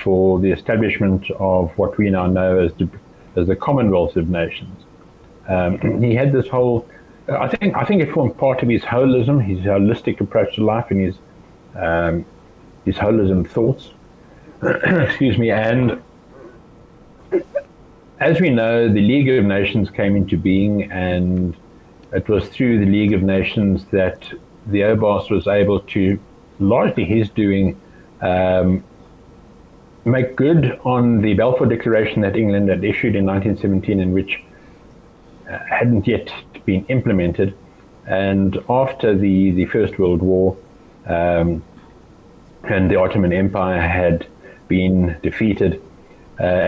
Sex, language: male, English